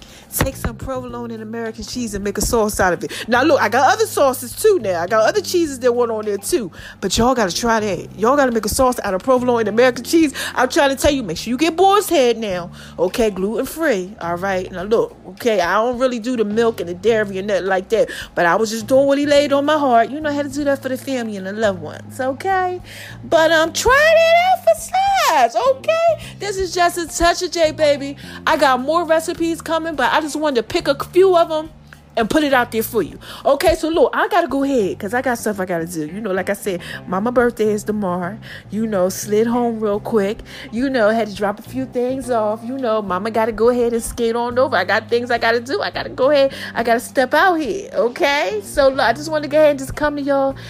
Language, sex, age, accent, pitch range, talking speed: English, female, 30-49, American, 225-305 Hz, 260 wpm